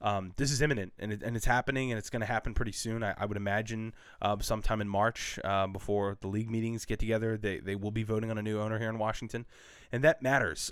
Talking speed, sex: 250 wpm, male